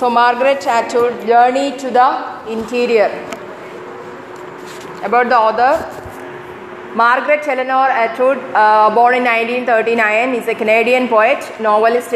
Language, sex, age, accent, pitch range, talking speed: English, female, 30-49, Indian, 215-245 Hz, 105 wpm